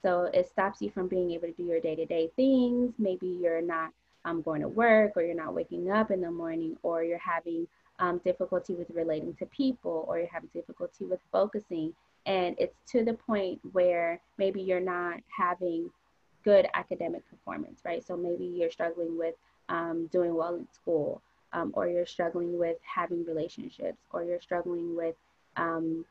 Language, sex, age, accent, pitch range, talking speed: English, female, 20-39, American, 165-195 Hz, 180 wpm